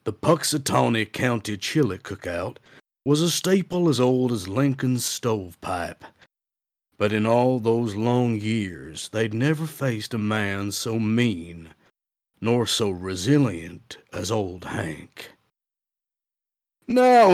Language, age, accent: English, 60-79, American